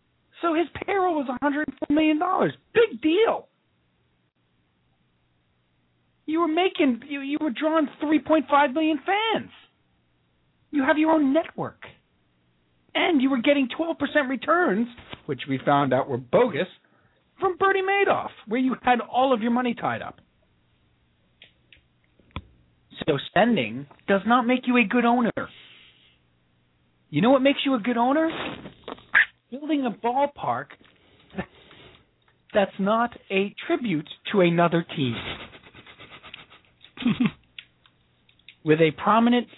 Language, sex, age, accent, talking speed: English, male, 40-59, American, 115 wpm